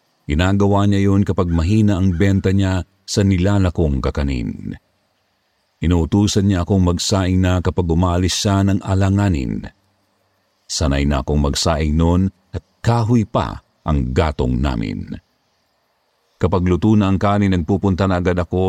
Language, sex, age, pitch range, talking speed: Filipino, male, 50-69, 85-105 Hz, 130 wpm